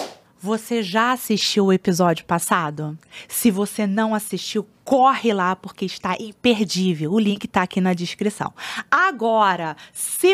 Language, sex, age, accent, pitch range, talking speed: Portuguese, female, 20-39, Brazilian, 185-235 Hz, 135 wpm